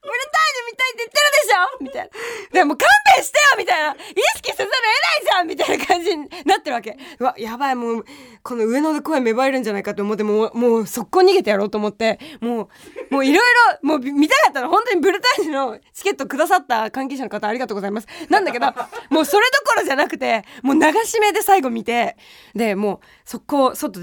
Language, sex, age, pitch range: Japanese, female, 20-39, 220-345 Hz